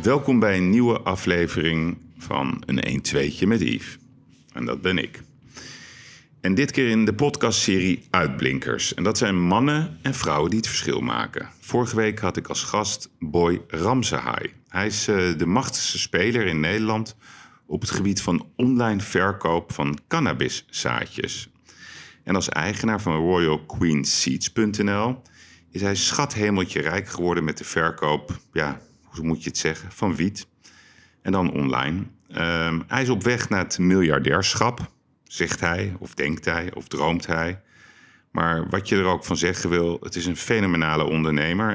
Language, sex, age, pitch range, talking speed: Dutch, male, 50-69, 85-110 Hz, 155 wpm